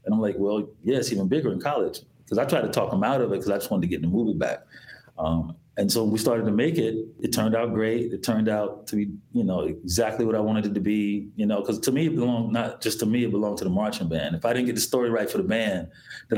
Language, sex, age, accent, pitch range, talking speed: English, male, 30-49, American, 105-125 Hz, 300 wpm